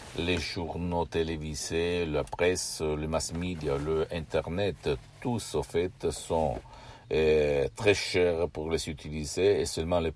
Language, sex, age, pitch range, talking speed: Italian, male, 60-79, 80-90 Hz, 140 wpm